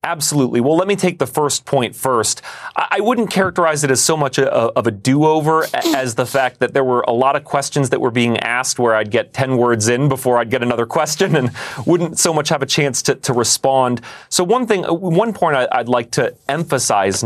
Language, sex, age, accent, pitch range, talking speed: English, male, 30-49, American, 130-180 Hz, 220 wpm